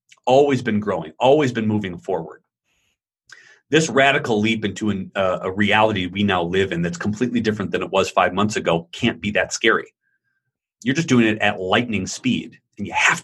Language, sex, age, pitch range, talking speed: English, male, 30-49, 110-155 Hz, 190 wpm